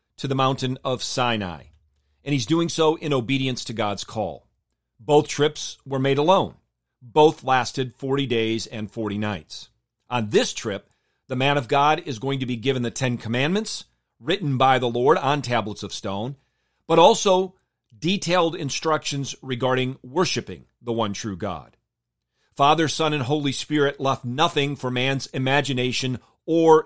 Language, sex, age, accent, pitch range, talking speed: English, male, 40-59, American, 115-145 Hz, 155 wpm